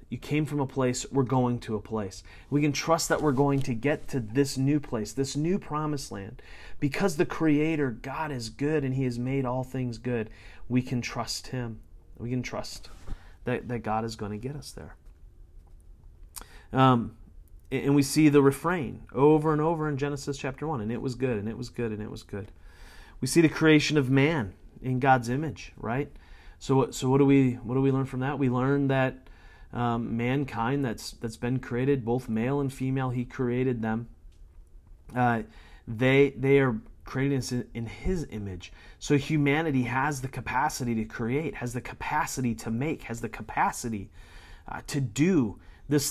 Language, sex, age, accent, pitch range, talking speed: English, male, 30-49, American, 100-135 Hz, 185 wpm